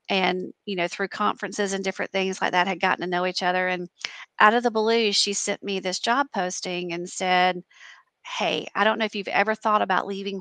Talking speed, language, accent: 225 wpm, English, American